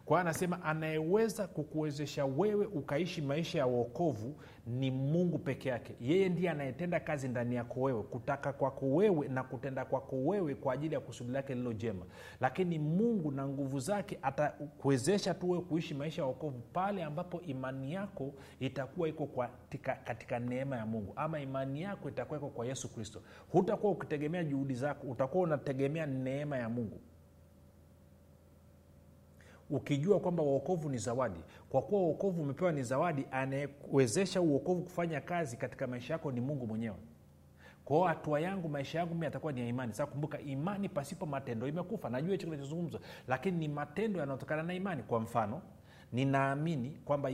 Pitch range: 125-170 Hz